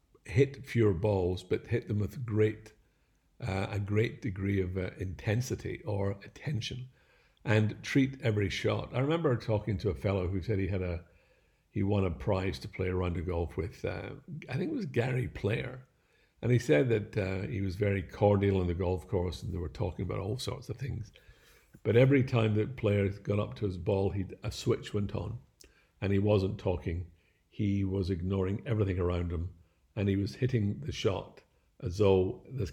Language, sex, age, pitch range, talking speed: English, male, 60-79, 95-120 Hz, 195 wpm